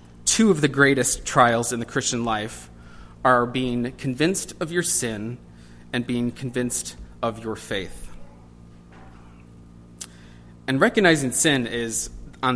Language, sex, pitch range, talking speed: English, male, 95-145 Hz, 125 wpm